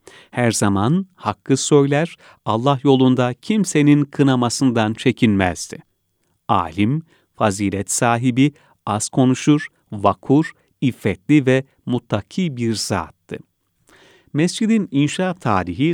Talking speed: 85 wpm